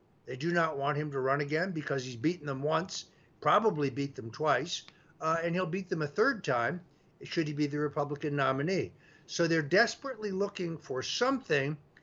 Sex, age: male, 50-69